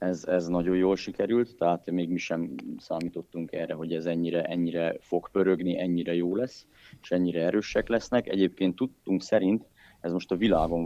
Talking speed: 170 wpm